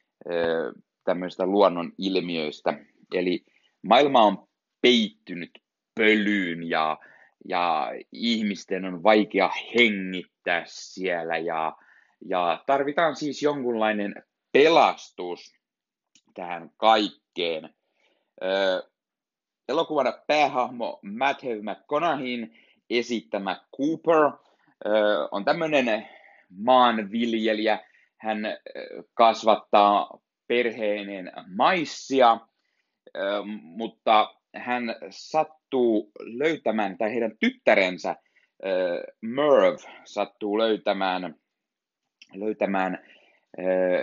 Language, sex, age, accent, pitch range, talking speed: Finnish, male, 30-49, native, 95-125 Hz, 65 wpm